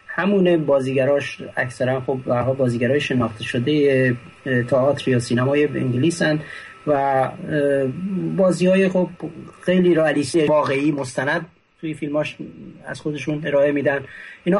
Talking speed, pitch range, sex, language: 120 wpm, 130-180 Hz, male, Persian